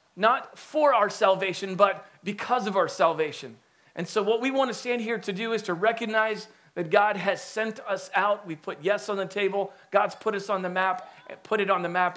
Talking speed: 220 wpm